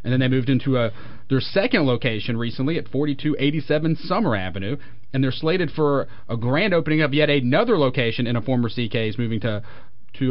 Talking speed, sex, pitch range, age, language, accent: 185 wpm, male, 115-145 Hz, 40-59, English, American